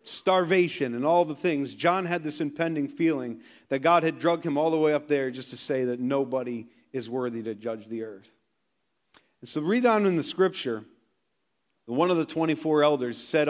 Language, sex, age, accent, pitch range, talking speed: English, male, 40-59, American, 150-200 Hz, 195 wpm